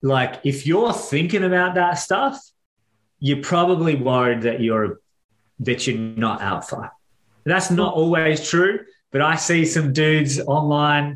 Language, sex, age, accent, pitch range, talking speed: English, male, 30-49, Australian, 115-150 Hz, 140 wpm